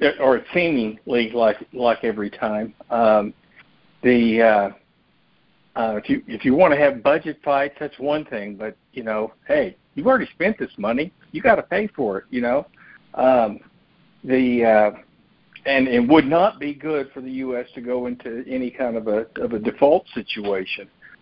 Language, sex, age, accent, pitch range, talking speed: English, male, 60-79, American, 115-165 Hz, 180 wpm